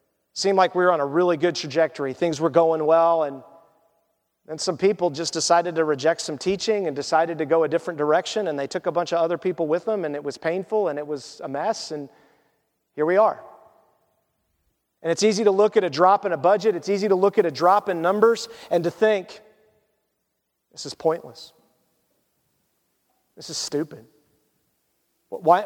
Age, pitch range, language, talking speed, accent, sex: 40-59, 170-235 Hz, English, 195 wpm, American, male